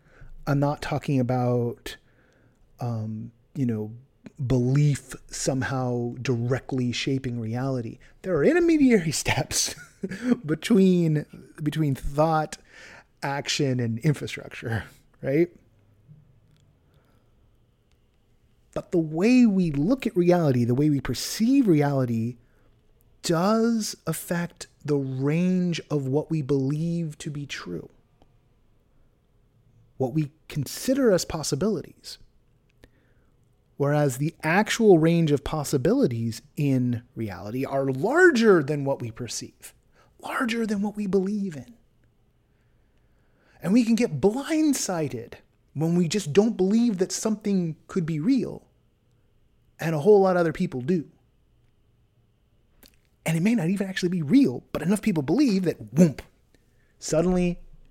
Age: 30-49